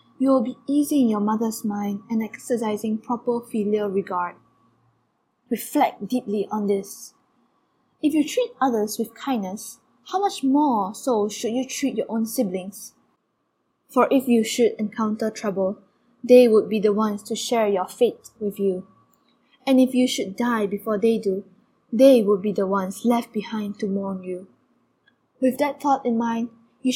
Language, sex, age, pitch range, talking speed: English, female, 10-29, 205-250 Hz, 165 wpm